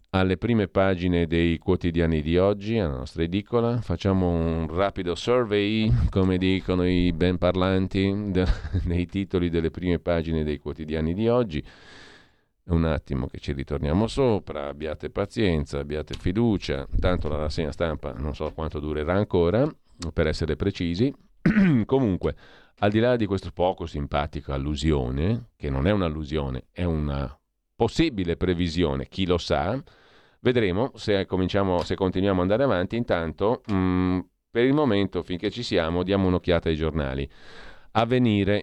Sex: male